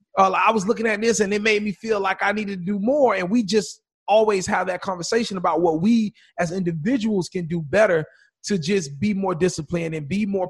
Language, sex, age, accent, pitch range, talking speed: English, male, 30-49, American, 175-220 Hz, 230 wpm